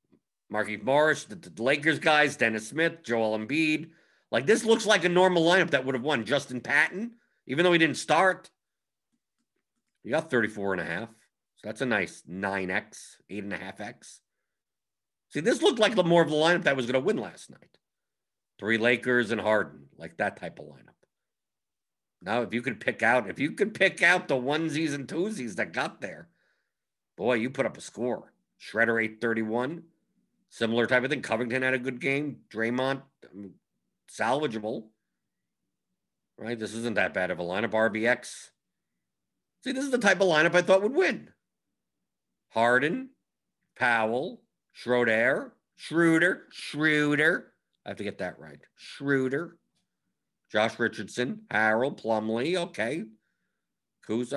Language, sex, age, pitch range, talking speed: English, male, 50-69, 115-170 Hz, 155 wpm